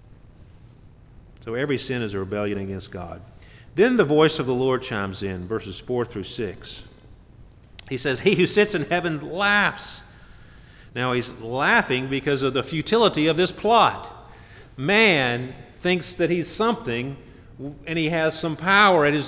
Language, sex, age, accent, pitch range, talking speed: English, male, 50-69, American, 115-160 Hz, 155 wpm